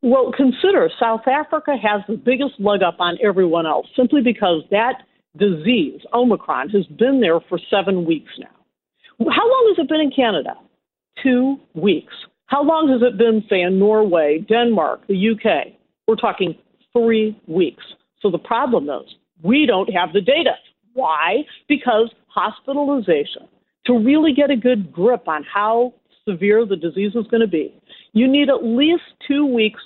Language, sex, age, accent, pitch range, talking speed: English, female, 50-69, American, 190-265 Hz, 165 wpm